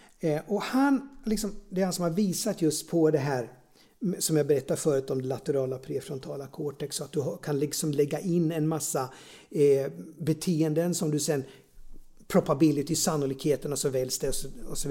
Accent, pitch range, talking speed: Swedish, 155-220 Hz, 190 wpm